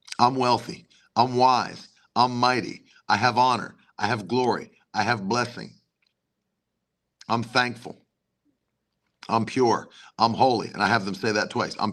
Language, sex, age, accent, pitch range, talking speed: English, male, 50-69, American, 120-165 Hz, 145 wpm